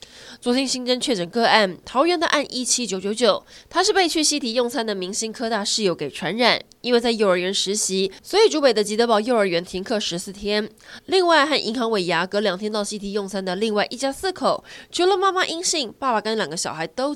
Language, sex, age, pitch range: Chinese, female, 20-39, 190-250 Hz